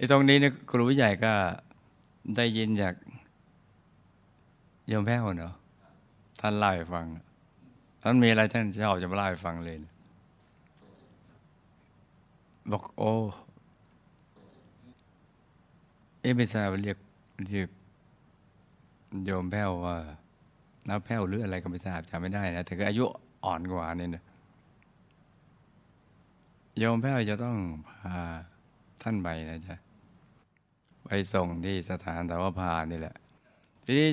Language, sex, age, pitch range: Thai, male, 60-79, 90-110 Hz